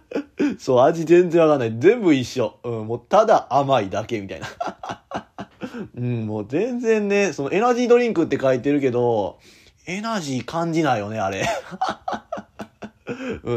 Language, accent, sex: Japanese, native, male